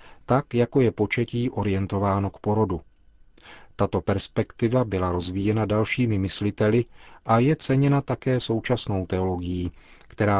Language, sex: Czech, male